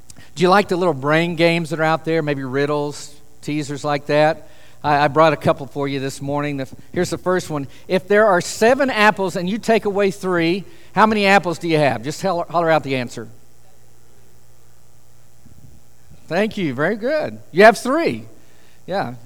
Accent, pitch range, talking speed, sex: American, 145-205 Hz, 180 wpm, male